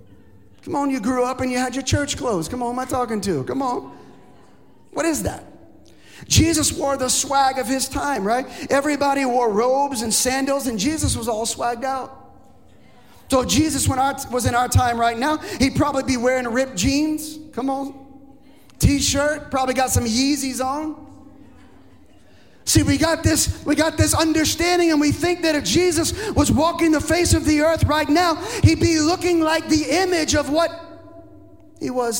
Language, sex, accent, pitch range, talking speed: English, male, American, 190-295 Hz, 185 wpm